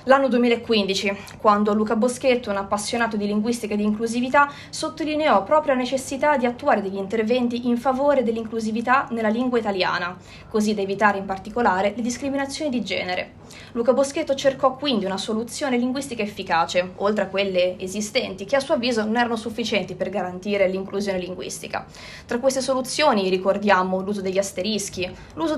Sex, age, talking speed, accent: female, 20-39, 155 wpm, native